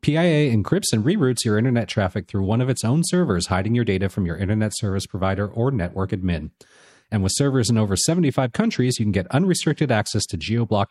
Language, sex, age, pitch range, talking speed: English, male, 40-59, 95-135 Hz, 210 wpm